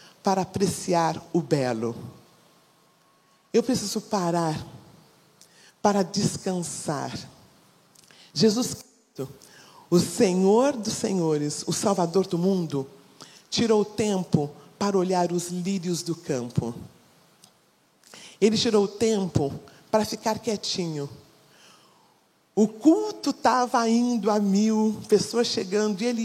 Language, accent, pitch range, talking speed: Portuguese, Brazilian, 170-220 Hz, 100 wpm